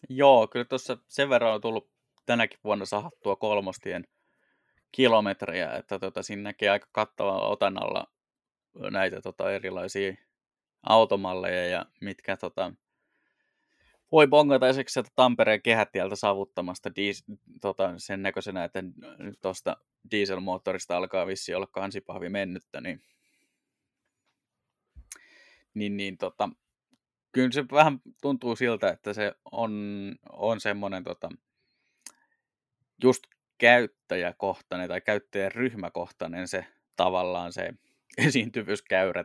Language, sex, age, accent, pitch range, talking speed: Finnish, male, 20-39, native, 100-125 Hz, 105 wpm